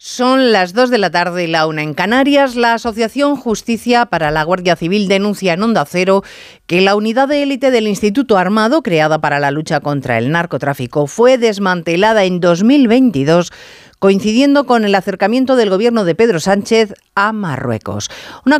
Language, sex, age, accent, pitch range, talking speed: Spanish, female, 40-59, Spanish, 170-240 Hz, 170 wpm